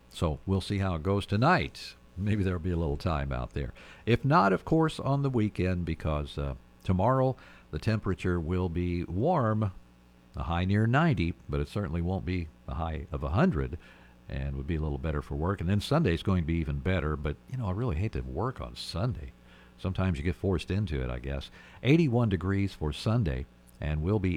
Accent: American